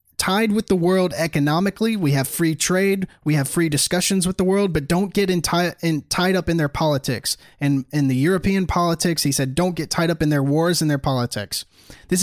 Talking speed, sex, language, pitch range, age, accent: 215 wpm, male, English, 150-190 Hz, 20-39, American